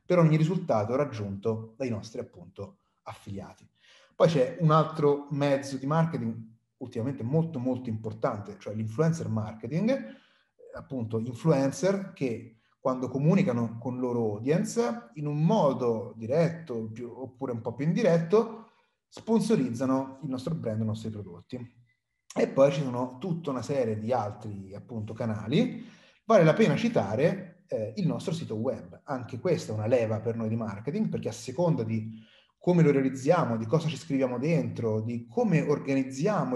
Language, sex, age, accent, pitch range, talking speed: Italian, male, 30-49, native, 115-165 Hz, 150 wpm